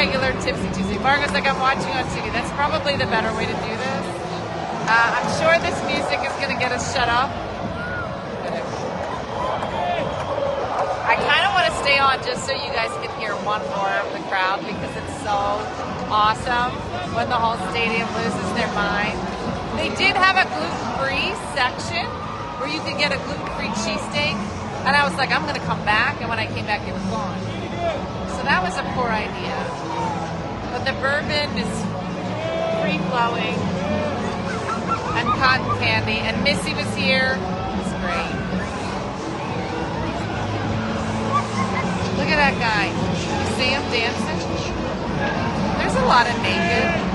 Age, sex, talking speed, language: 30-49, female, 155 wpm, English